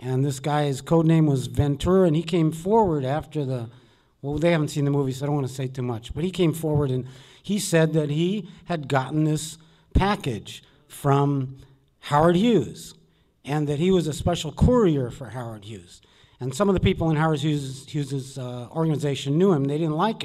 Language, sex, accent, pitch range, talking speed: English, male, American, 140-170 Hz, 205 wpm